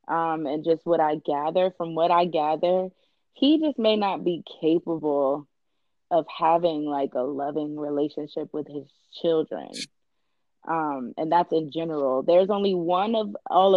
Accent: American